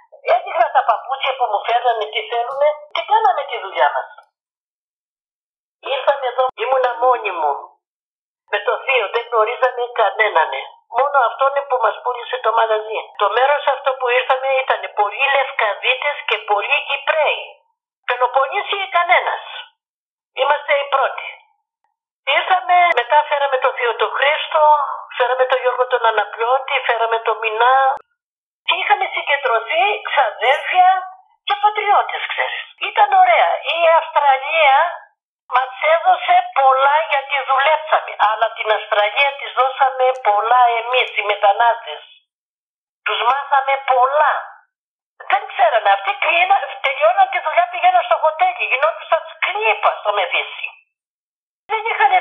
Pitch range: 245-340 Hz